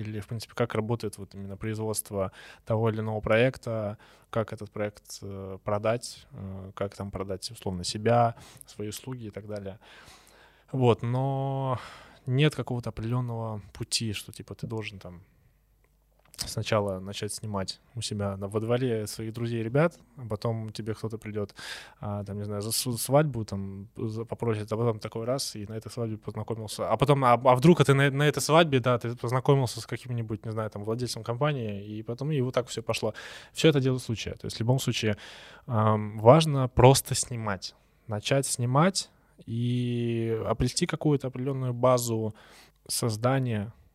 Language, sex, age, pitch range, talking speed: Russian, male, 20-39, 105-125 Hz, 160 wpm